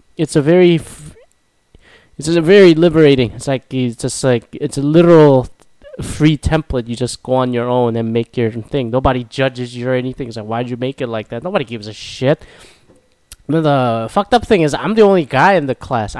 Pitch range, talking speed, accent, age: 115-145 Hz, 205 wpm, American, 20-39